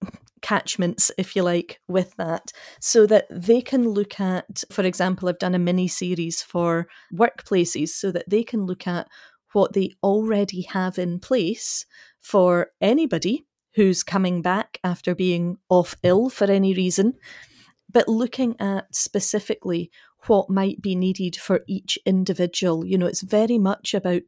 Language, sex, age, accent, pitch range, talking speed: English, female, 40-59, British, 180-205 Hz, 155 wpm